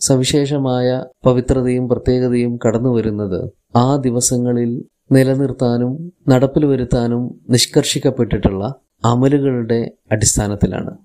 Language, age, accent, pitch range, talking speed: Malayalam, 20-39, native, 115-135 Hz, 70 wpm